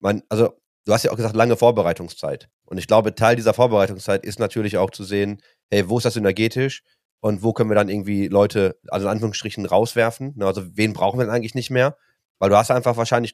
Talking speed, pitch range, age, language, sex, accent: 220 wpm, 105-120 Hz, 30-49, German, male, German